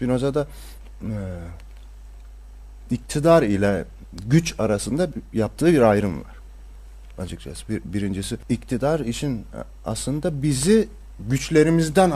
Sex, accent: male, native